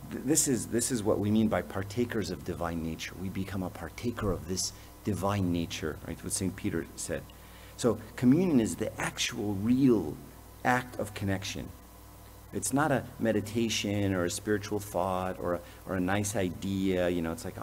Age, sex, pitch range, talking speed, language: 50-69, male, 95-115 Hz, 175 wpm, English